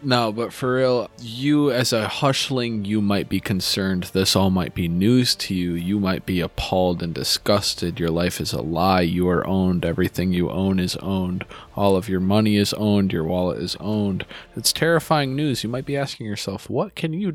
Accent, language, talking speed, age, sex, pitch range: American, English, 205 wpm, 20-39, male, 95-140 Hz